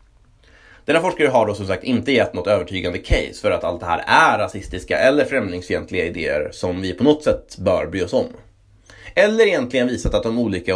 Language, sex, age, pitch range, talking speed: Swedish, male, 30-49, 95-115 Hz, 200 wpm